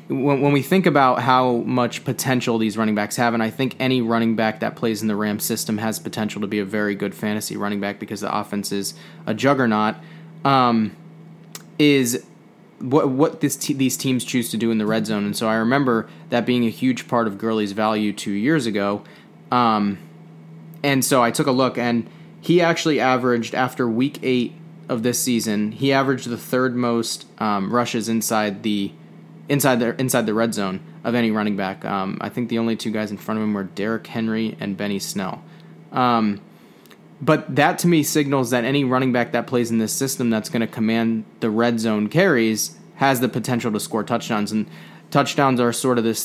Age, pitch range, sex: 20-39, 105-130 Hz, male